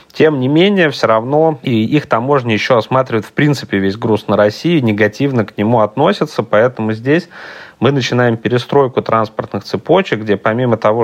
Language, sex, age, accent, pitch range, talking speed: Russian, male, 30-49, native, 105-130 Hz, 165 wpm